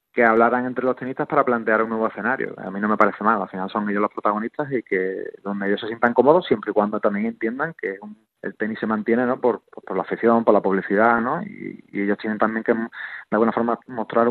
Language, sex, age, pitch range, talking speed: Spanish, male, 20-39, 110-125 Hz, 245 wpm